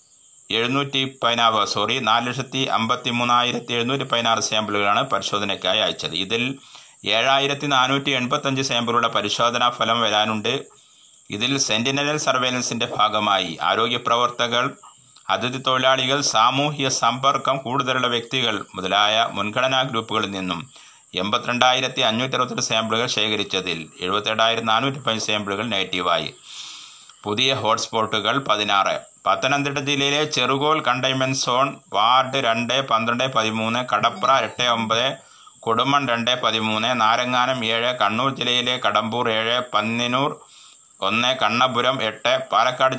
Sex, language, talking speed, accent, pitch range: male, Malayalam, 85 wpm, native, 110-130 Hz